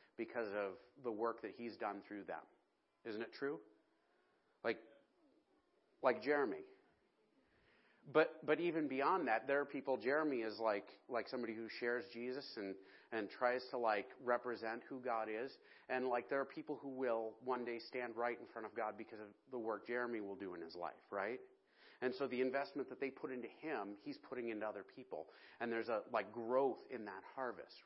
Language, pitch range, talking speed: English, 115-150 Hz, 190 wpm